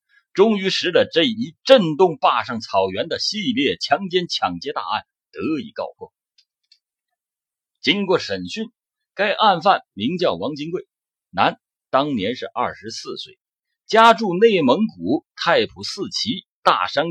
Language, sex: Chinese, male